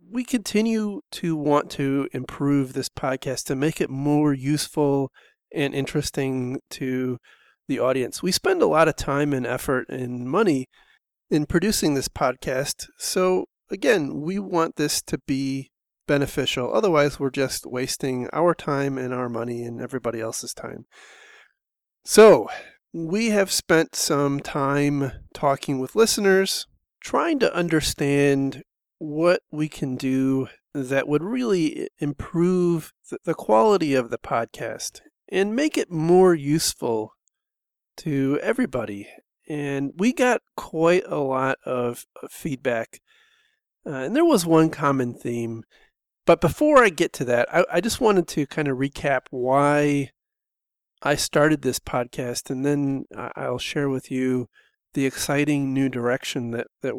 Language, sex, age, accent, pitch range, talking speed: English, male, 30-49, American, 130-170 Hz, 140 wpm